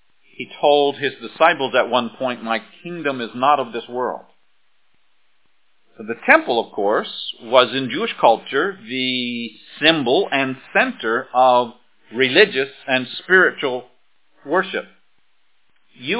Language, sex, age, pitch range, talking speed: English, male, 50-69, 105-135 Hz, 120 wpm